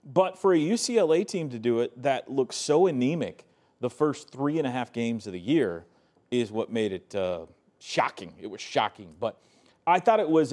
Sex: male